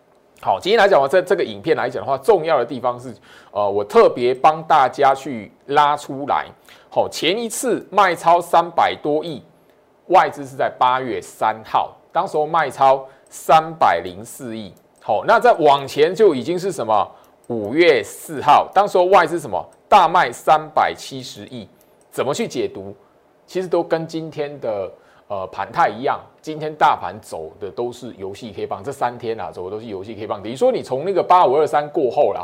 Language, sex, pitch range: Chinese, male, 125-185 Hz